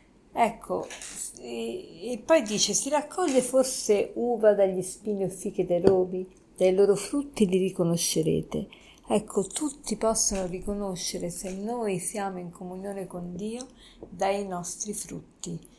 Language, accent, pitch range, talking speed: Italian, native, 185-230 Hz, 130 wpm